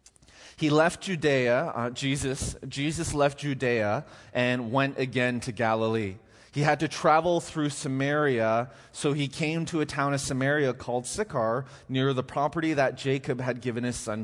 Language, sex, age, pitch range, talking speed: English, male, 30-49, 125-155 Hz, 160 wpm